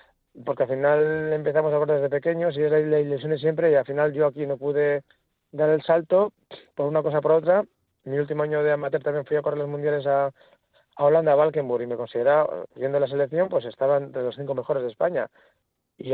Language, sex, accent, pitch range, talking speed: Spanish, male, Spanish, 145-170 Hz, 225 wpm